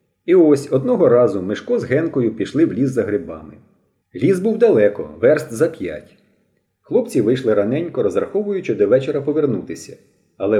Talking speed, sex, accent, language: 145 wpm, male, native, Ukrainian